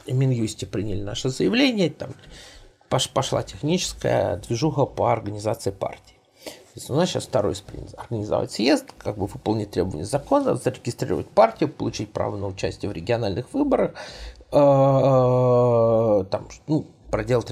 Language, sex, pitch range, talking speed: Russian, male, 115-155 Hz, 125 wpm